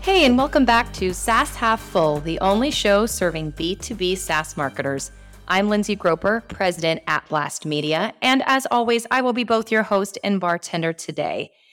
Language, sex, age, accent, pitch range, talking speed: English, female, 30-49, American, 165-235 Hz, 175 wpm